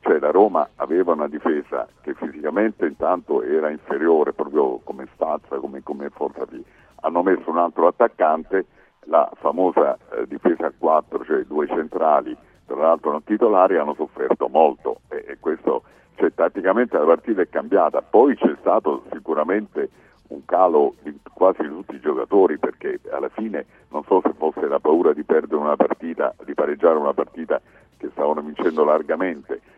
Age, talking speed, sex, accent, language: 50-69, 160 wpm, male, native, Italian